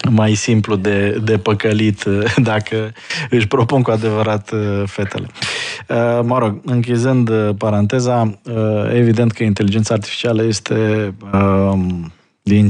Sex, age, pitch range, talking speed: male, 20-39, 100-125 Hz, 100 wpm